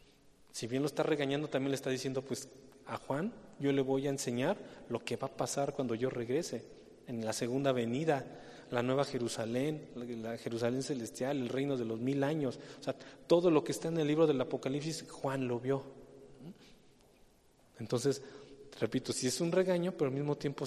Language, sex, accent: English, male, Mexican